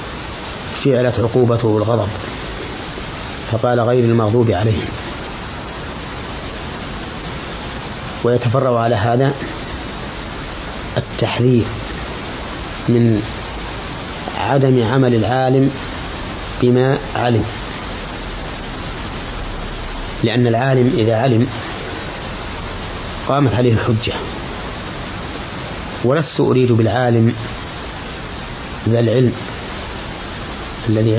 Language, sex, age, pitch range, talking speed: Arabic, male, 30-49, 105-125 Hz, 60 wpm